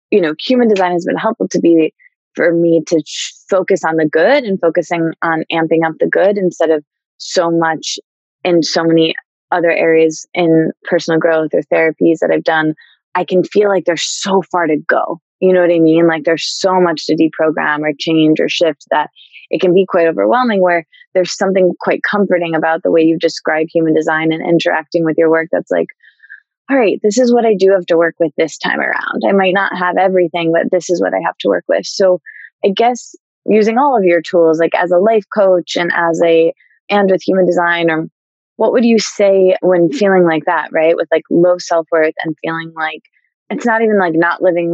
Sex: female